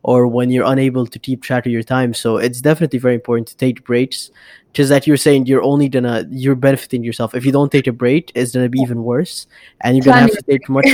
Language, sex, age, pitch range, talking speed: English, male, 20-39, 120-140 Hz, 250 wpm